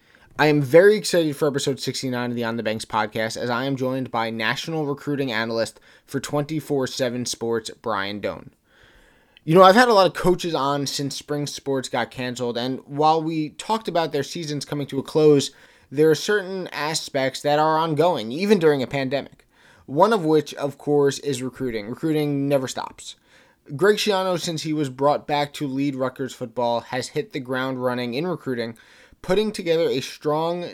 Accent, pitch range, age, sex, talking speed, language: American, 130-155 Hz, 20-39, male, 185 wpm, English